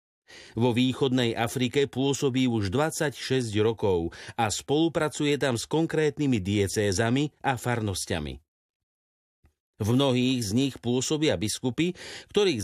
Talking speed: 105 wpm